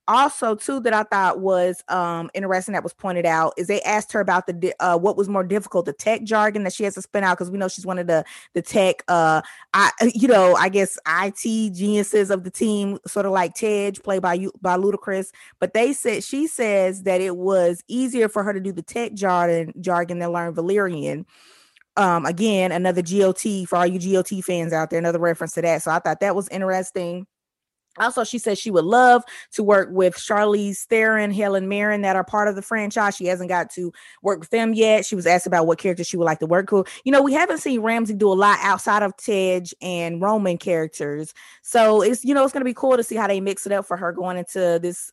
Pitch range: 180-210 Hz